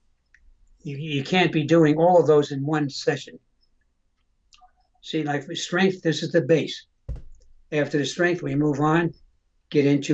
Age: 60-79